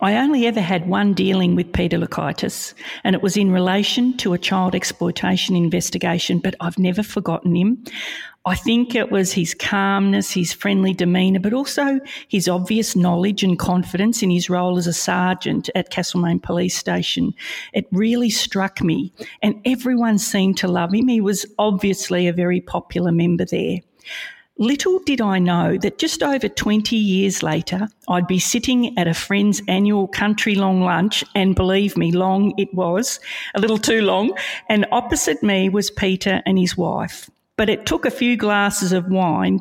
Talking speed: 170 wpm